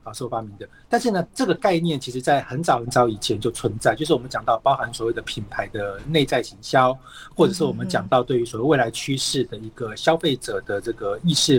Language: Chinese